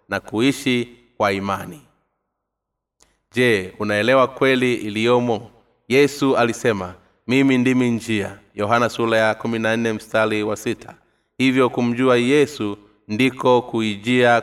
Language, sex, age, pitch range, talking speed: Swahili, male, 30-49, 110-125 Hz, 105 wpm